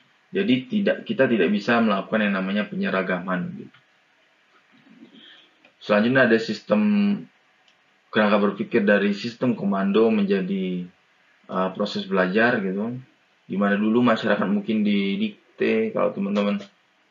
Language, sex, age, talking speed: Indonesian, male, 20-39, 105 wpm